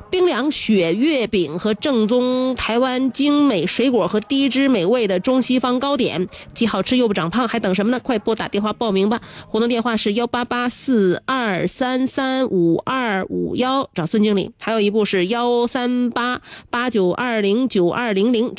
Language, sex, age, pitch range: Chinese, female, 30-49, 200-250 Hz